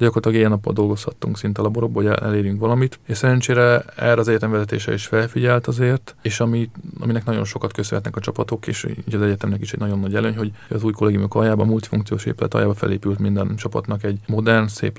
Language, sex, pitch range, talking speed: Hungarian, male, 105-115 Hz, 190 wpm